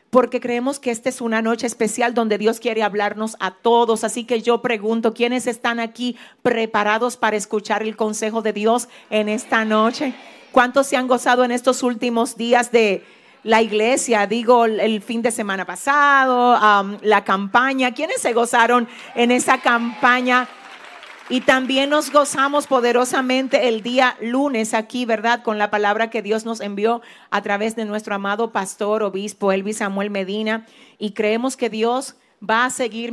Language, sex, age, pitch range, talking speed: Spanish, female, 50-69, 215-250 Hz, 165 wpm